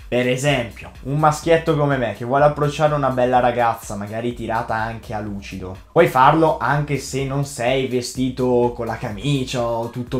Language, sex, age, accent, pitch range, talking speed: Italian, male, 20-39, native, 110-135 Hz, 170 wpm